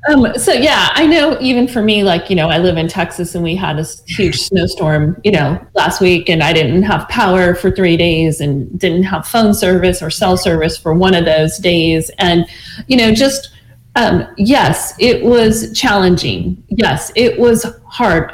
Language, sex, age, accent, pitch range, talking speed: English, female, 30-49, American, 165-215 Hz, 195 wpm